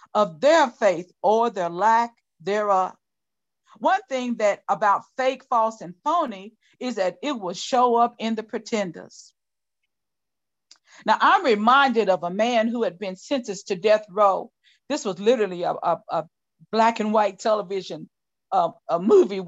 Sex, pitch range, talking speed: female, 195-245 Hz, 150 wpm